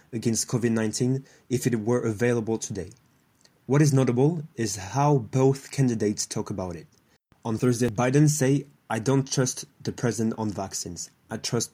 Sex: male